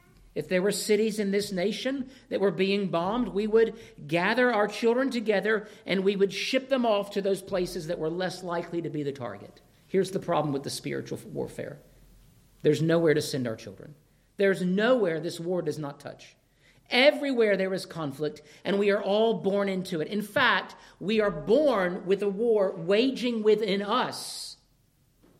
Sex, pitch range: male, 170-230 Hz